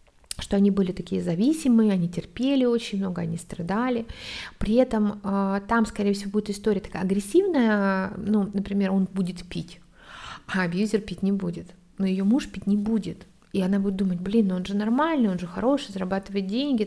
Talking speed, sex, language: 180 wpm, female, Russian